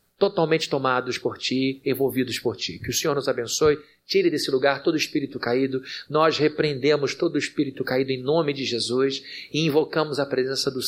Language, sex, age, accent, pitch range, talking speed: Portuguese, male, 40-59, Brazilian, 125-160 Hz, 190 wpm